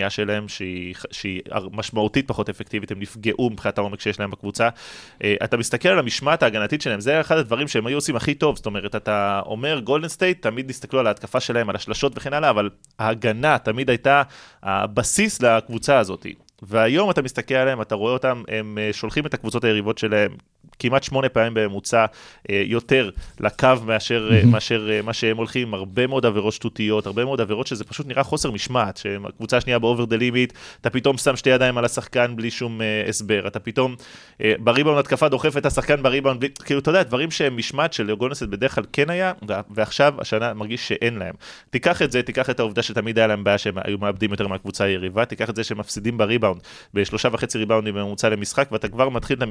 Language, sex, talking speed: Hebrew, male, 170 wpm